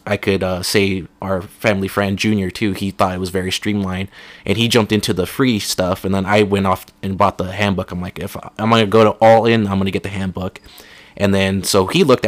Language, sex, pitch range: English, male, 95-110 Hz